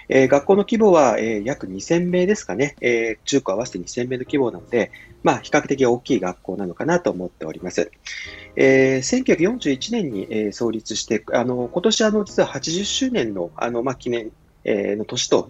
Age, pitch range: 40-59, 105-165 Hz